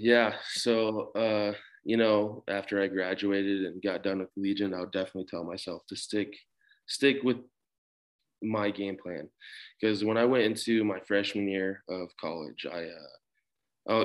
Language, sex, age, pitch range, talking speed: English, male, 20-39, 95-105 Hz, 160 wpm